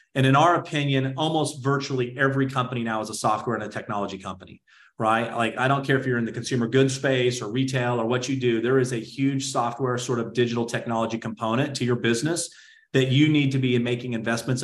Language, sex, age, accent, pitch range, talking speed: English, male, 30-49, American, 115-135 Hz, 220 wpm